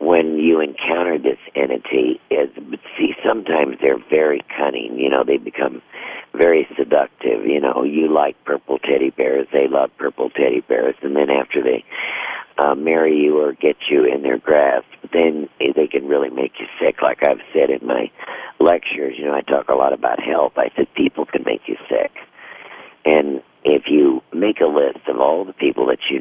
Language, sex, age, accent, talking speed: English, male, 50-69, American, 190 wpm